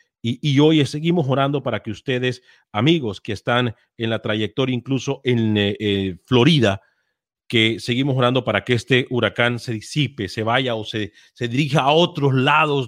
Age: 40-59